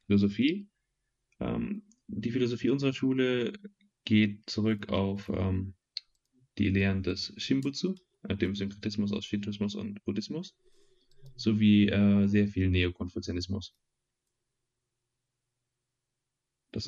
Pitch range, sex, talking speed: 95-120 Hz, male, 90 wpm